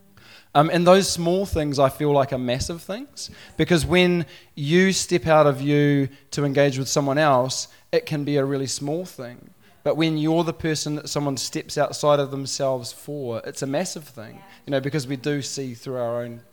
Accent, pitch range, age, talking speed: Australian, 130-155 Hz, 20-39, 200 wpm